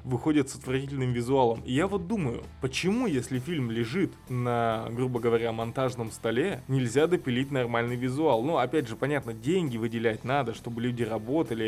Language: Russian